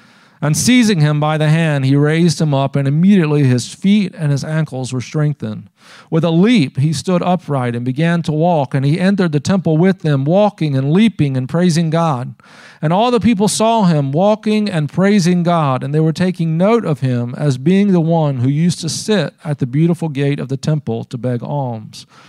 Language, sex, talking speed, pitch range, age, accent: English, male, 205 wpm, 135-165 Hz, 40-59, American